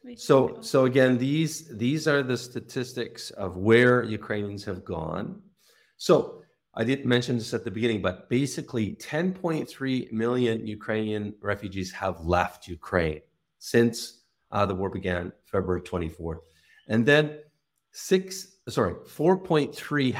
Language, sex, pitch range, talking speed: English, male, 95-130 Hz, 125 wpm